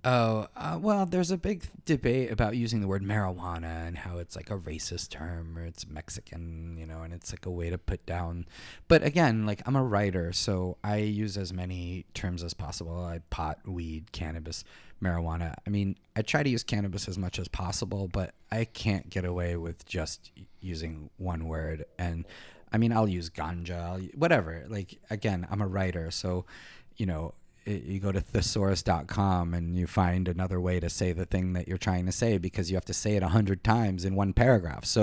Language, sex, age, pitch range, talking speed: English, male, 30-49, 90-110 Hz, 205 wpm